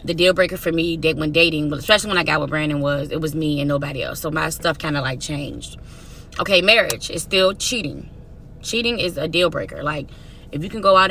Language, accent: English, American